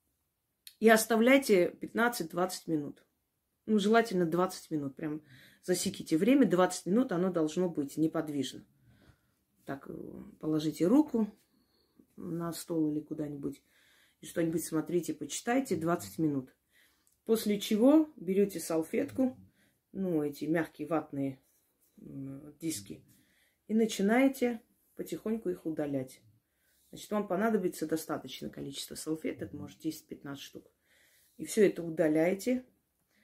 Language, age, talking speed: Russian, 30-49, 105 wpm